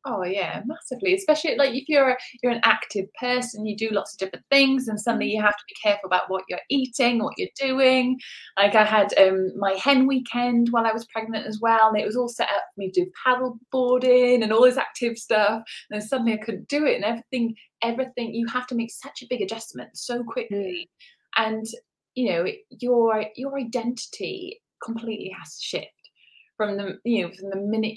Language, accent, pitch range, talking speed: English, British, 195-250 Hz, 210 wpm